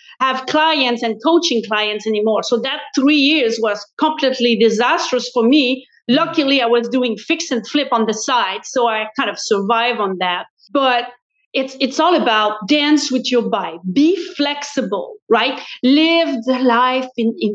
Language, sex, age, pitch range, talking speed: English, female, 40-59, 230-310 Hz, 170 wpm